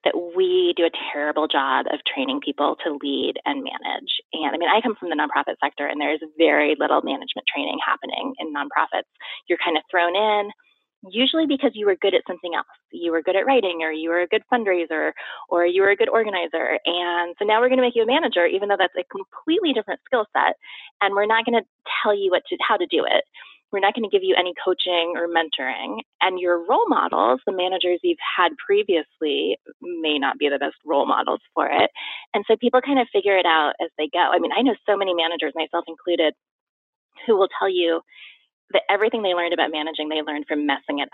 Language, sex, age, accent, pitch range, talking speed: English, female, 20-39, American, 170-240 Hz, 230 wpm